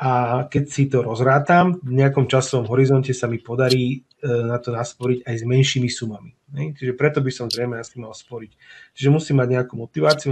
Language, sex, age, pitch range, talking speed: Slovak, male, 30-49, 115-140 Hz, 185 wpm